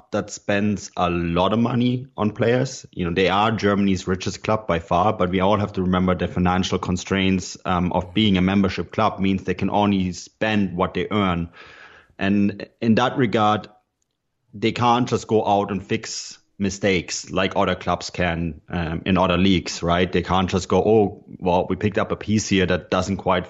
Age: 30-49